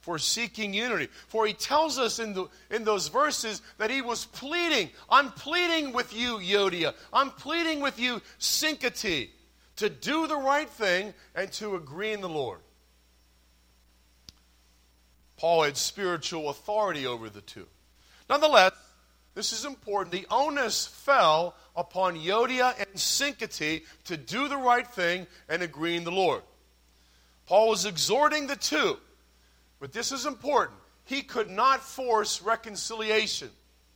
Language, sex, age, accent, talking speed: English, male, 40-59, American, 140 wpm